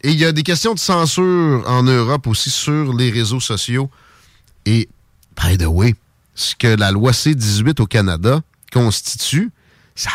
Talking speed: 165 wpm